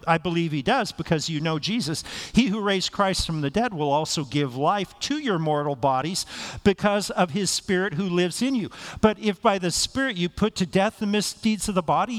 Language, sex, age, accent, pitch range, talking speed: English, male, 50-69, American, 165-225 Hz, 220 wpm